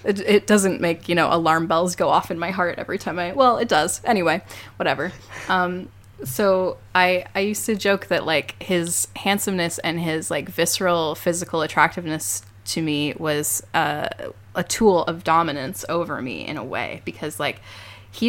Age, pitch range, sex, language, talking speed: 10-29, 140-175 Hz, female, English, 175 wpm